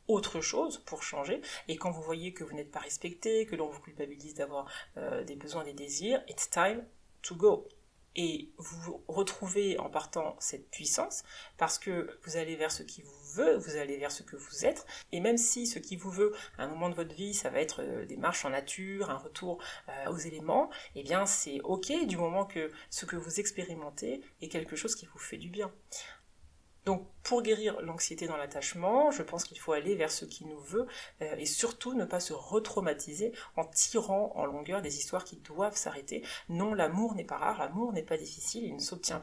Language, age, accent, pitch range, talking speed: French, 30-49, French, 150-200 Hz, 215 wpm